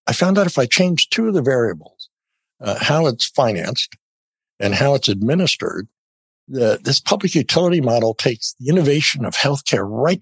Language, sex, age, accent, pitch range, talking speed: English, male, 60-79, American, 110-165 Hz, 170 wpm